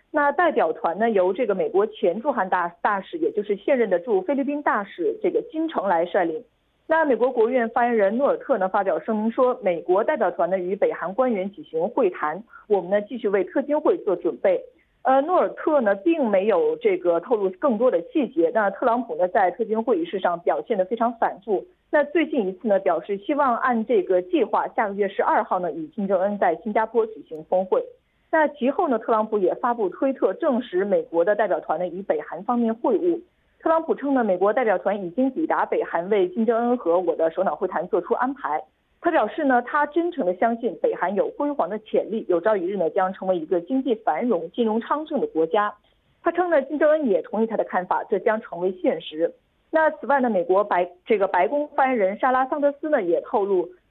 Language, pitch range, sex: Korean, 200-320 Hz, female